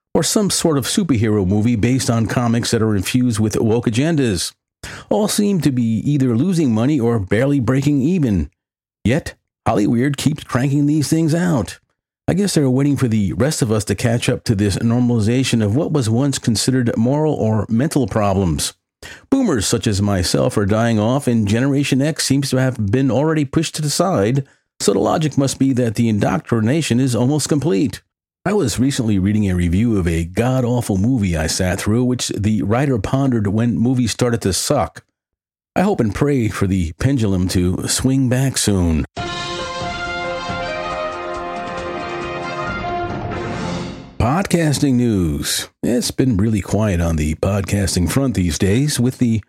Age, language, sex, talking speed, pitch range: 50-69, English, male, 160 wpm, 100-135 Hz